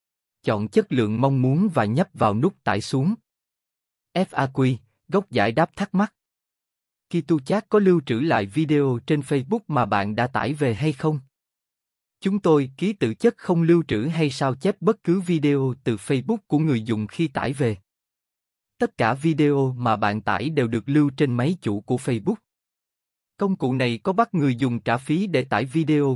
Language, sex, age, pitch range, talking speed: Vietnamese, male, 20-39, 115-165 Hz, 185 wpm